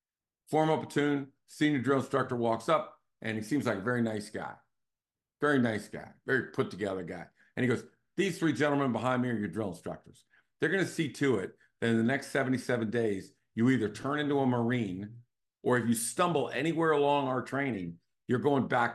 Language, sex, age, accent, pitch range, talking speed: English, male, 50-69, American, 105-135 Hz, 195 wpm